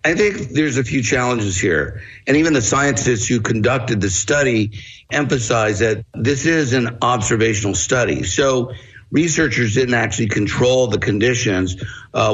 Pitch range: 105-130 Hz